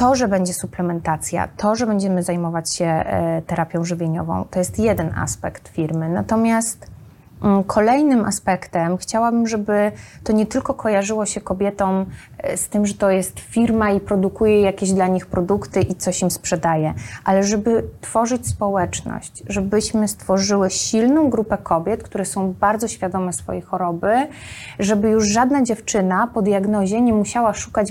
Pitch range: 190-225 Hz